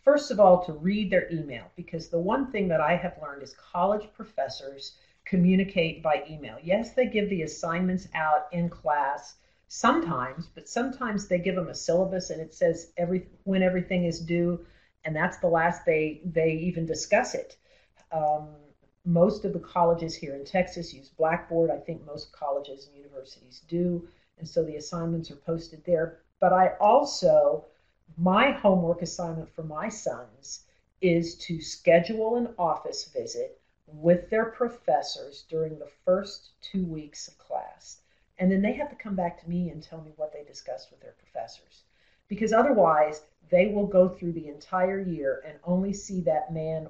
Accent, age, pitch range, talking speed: American, 50-69, 160-205 Hz, 170 wpm